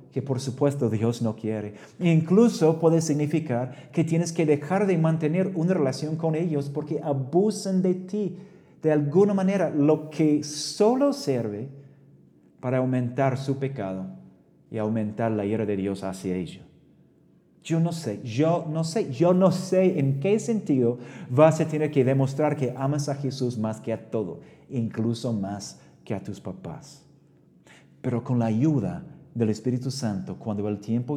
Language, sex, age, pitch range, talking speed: Spanish, male, 40-59, 110-150 Hz, 160 wpm